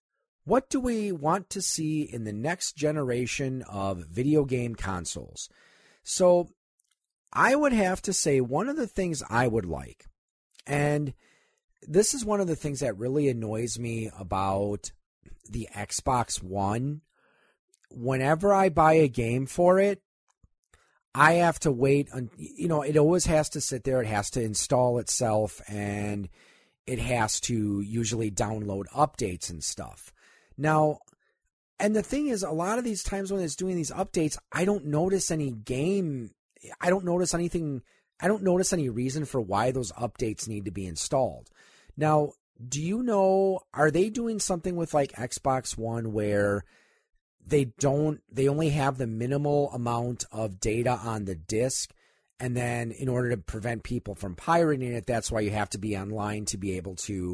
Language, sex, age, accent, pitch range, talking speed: English, male, 40-59, American, 110-170 Hz, 165 wpm